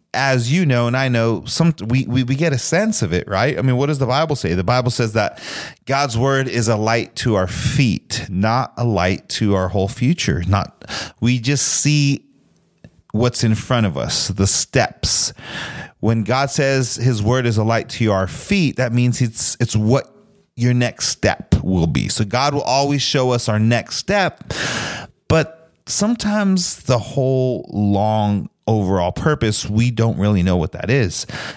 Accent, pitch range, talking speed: American, 105-135 Hz, 185 wpm